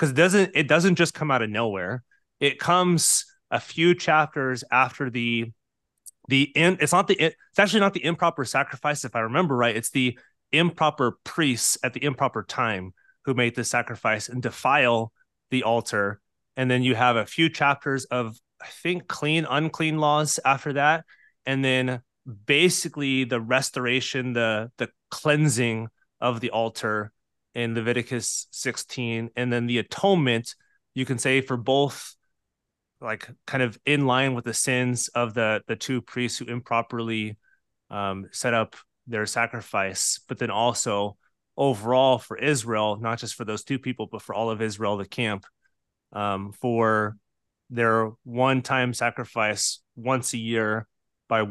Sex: male